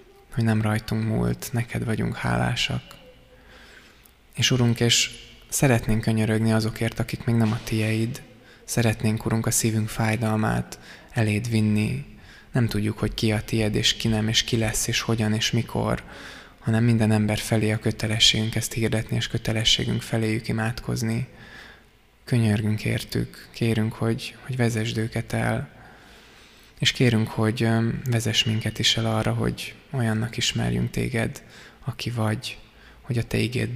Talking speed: 140 wpm